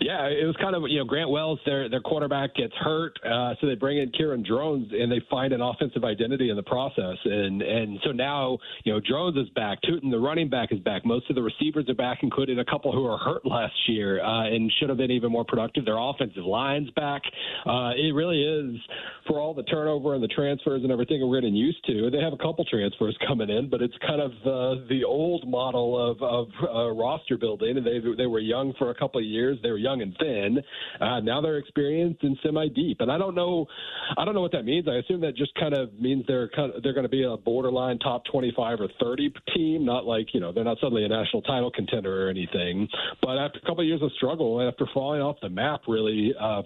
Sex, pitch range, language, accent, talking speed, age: male, 115-145 Hz, English, American, 245 wpm, 40-59